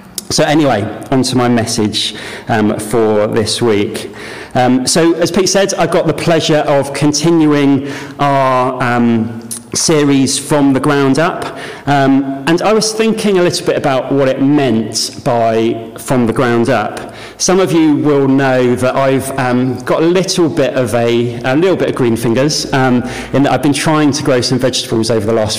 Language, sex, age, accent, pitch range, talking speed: English, male, 40-59, British, 115-140 Hz, 185 wpm